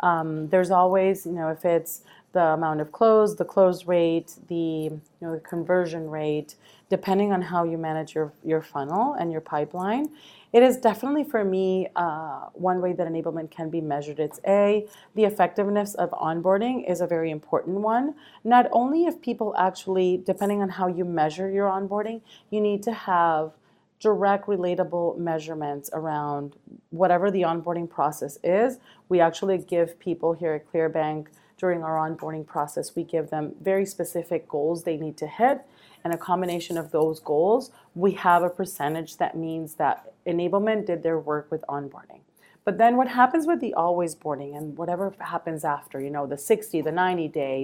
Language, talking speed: English, 175 wpm